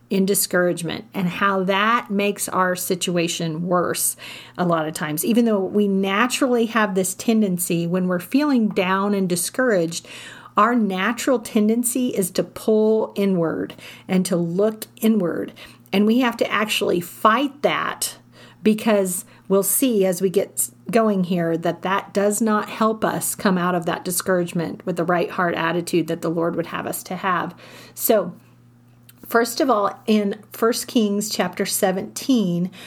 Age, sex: 40-59, female